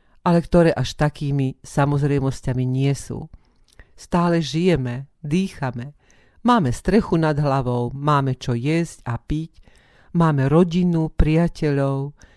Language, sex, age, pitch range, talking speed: Slovak, female, 50-69, 135-165 Hz, 105 wpm